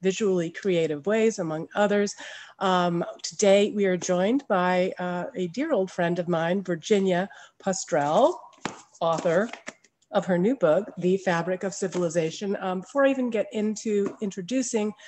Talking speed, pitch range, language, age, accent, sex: 145 wpm, 180-215 Hz, English, 40-59, American, female